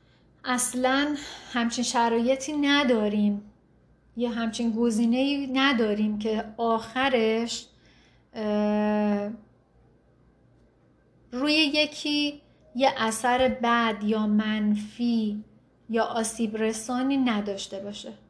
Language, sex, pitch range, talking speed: Persian, female, 220-265 Hz, 70 wpm